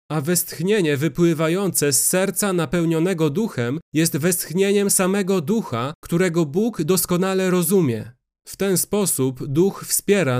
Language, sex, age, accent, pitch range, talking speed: Polish, male, 30-49, native, 145-180 Hz, 115 wpm